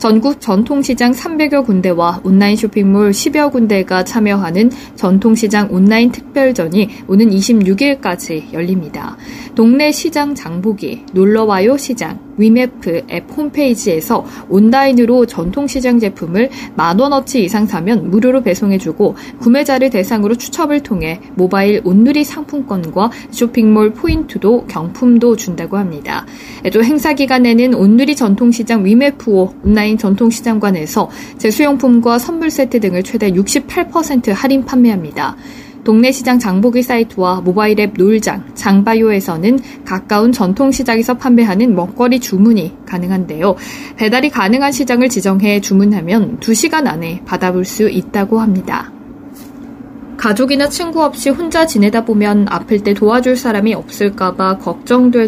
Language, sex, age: Korean, female, 50-69